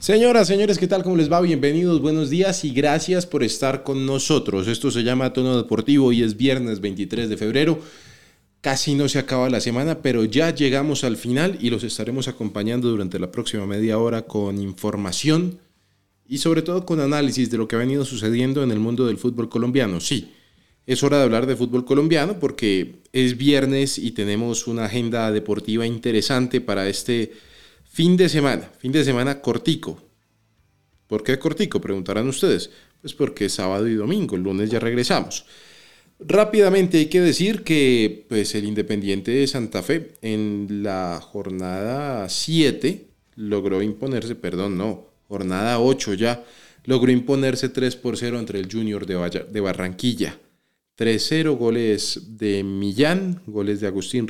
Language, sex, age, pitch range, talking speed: Spanish, male, 30-49, 105-140 Hz, 160 wpm